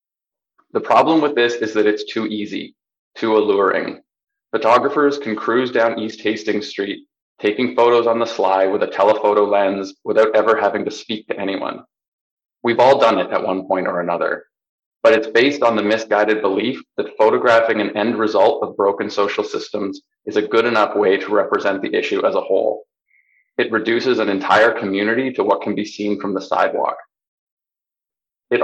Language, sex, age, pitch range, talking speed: English, male, 20-39, 105-130 Hz, 180 wpm